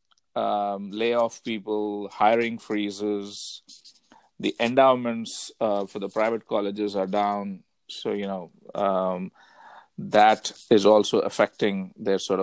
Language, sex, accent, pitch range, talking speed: English, male, Indian, 100-125 Hz, 115 wpm